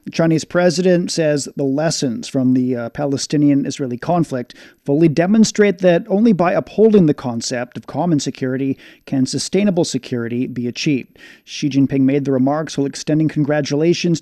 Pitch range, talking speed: 135-170 Hz, 145 wpm